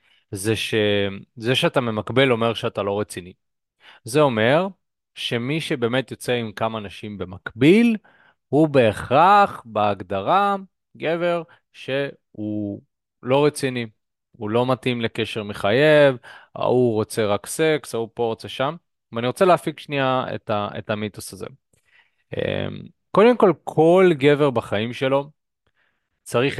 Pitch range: 110-155 Hz